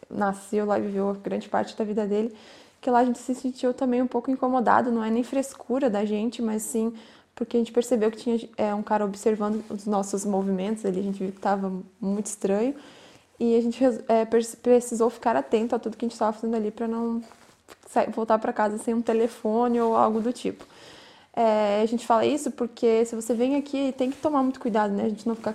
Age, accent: 10-29, Brazilian